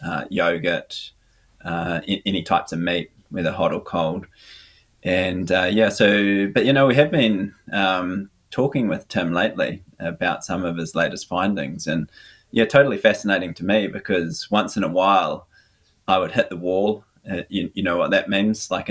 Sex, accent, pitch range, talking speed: male, Australian, 90-110 Hz, 180 wpm